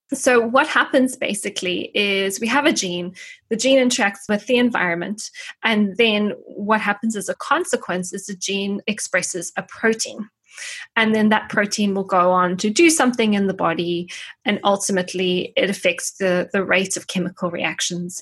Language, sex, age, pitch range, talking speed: English, female, 20-39, 190-240 Hz, 170 wpm